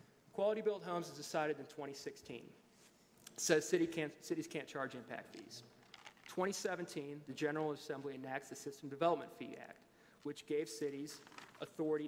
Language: English